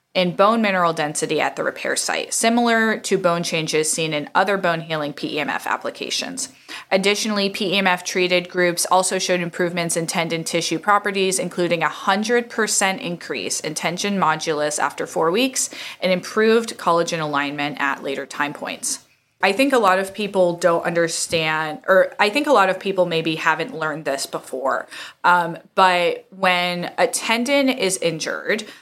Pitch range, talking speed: 170-210 Hz, 155 wpm